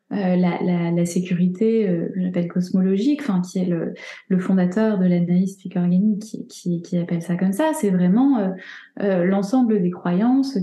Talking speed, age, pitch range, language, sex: 170 wpm, 20-39, 180-225 Hz, French, female